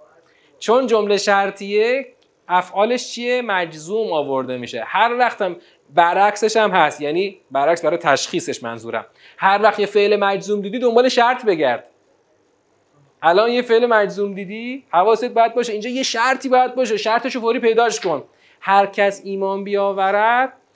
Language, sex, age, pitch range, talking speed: Persian, male, 30-49, 175-250 Hz, 140 wpm